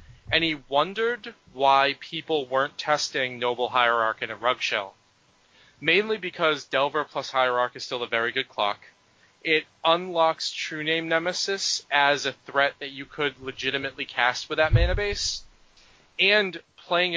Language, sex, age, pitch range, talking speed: English, male, 30-49, 125-160 Hz, 150 wpm